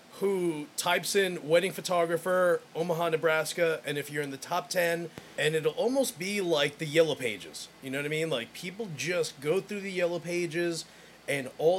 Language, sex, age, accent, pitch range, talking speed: English, male, 30-49, American, 160-200 Hz, 190 wpm